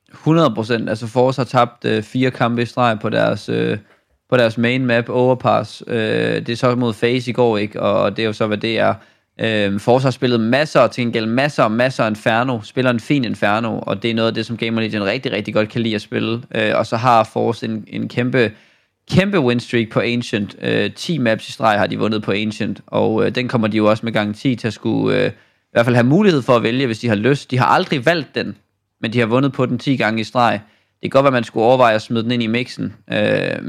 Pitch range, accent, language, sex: 110-125 Hz, native, Danish, male